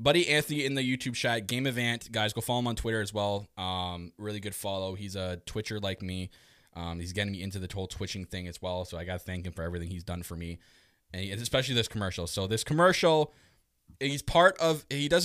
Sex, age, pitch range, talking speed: male, 20-39, 100-140 Hz, 240 wpm